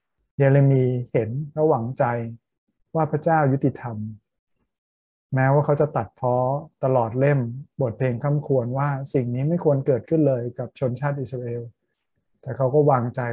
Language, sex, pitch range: Thai, male, 120-140 Hz